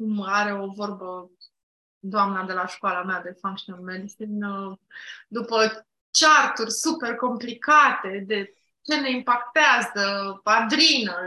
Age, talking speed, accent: 20-39, 105 wpm, native